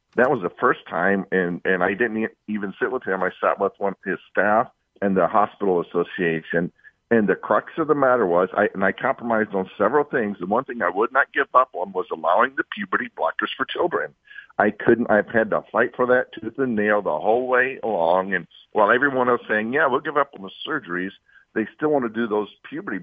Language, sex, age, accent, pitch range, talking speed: English, male, 50-69, American, 100-140 Hz, 230 wpm